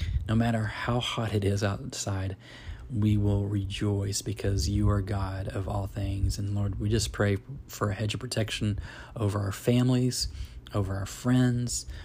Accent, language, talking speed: American, English, 165 wpm